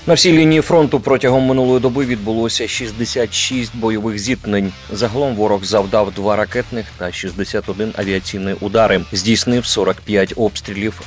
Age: 30-49